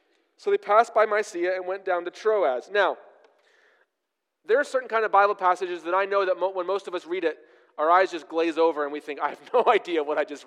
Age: 30-49